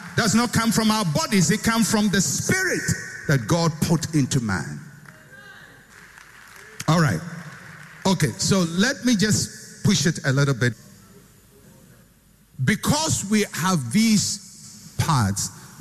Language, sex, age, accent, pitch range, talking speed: English, male, 60-79, Nigerian, 120-170 Hz, 130 wpm